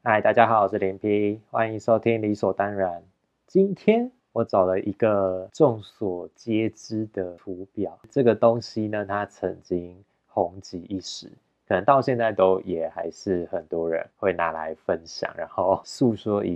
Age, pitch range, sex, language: 20-39, 90-110 Hz, male, Chinese